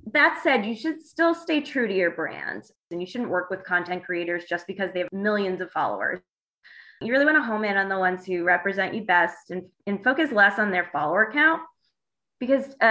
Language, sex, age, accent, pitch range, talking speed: English, female, 20-39, American, 175-225 Hz, 215 wpm